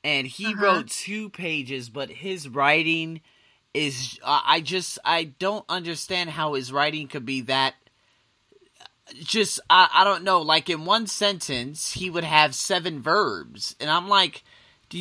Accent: American